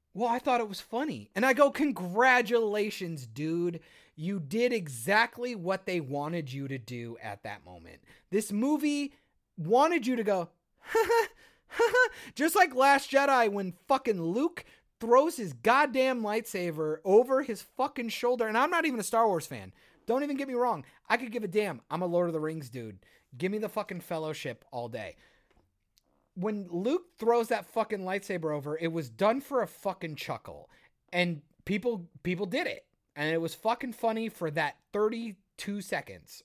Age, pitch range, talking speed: 30-49, 160-240 Hz, 175 wpm